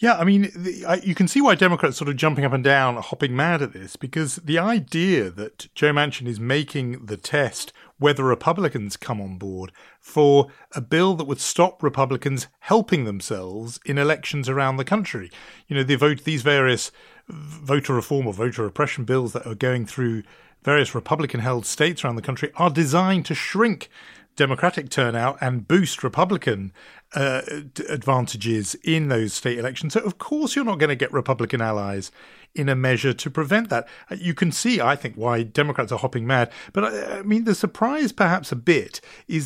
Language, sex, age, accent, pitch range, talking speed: English, male, 40-59, British, 120-165 Hz, 180 wpm